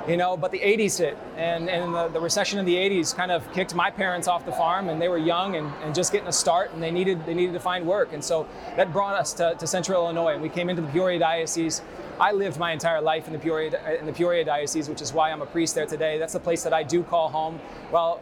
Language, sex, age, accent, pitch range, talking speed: English, male, 20-39, American, 170-205 Hz, 280 wpm